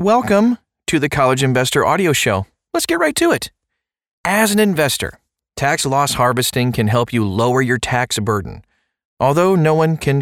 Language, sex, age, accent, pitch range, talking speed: English, male, 40-59, American, 110-150 Hz, 170 wpm